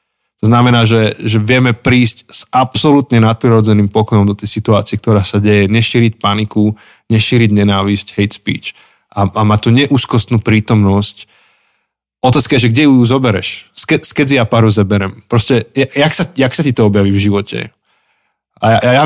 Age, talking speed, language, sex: 20-39, 155 wpm, Slovak, male